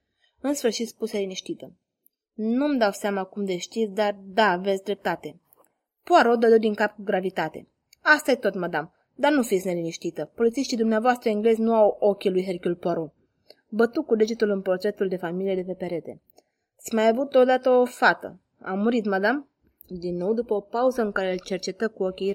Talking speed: 185 wpm